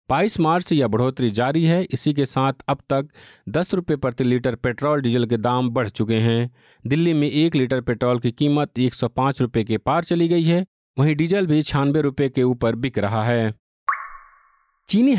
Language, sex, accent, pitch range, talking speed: Hindi, male, native, 120-160 Hz, 200 wpm